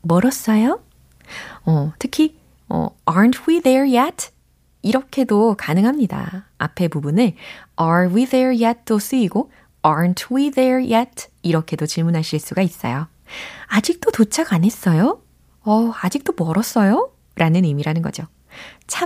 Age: 20-39